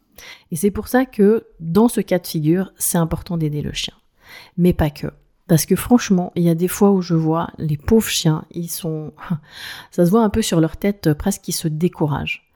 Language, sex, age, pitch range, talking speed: French, female, 30-49, 155-195 Hz, 220 wpm